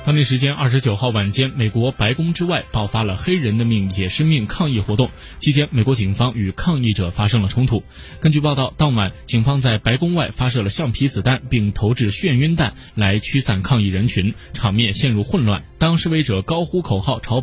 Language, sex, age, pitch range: Chinese, male, 20-39, 105-140 Hz